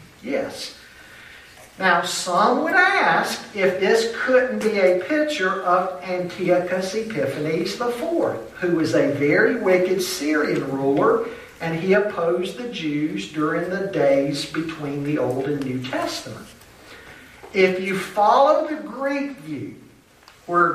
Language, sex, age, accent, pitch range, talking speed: English, male, 50-69, American, 155-225 Hz, 125 wpm